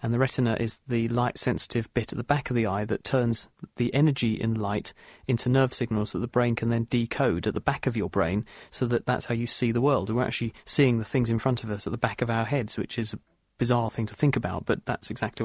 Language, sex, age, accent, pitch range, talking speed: English, male, 40-59, British, 115-135 Hz, 265 wpm